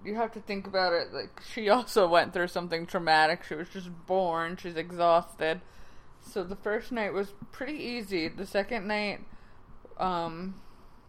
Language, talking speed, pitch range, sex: English, 160 wpm, 165-195 Hz, female